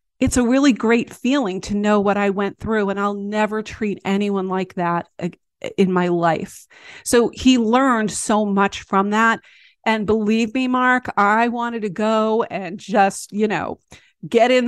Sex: female